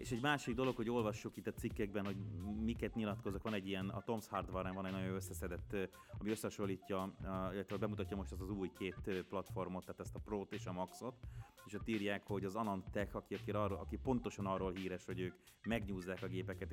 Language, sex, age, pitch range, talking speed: Hungarian, male, 30-49, 95-105 Hz, 210 wpm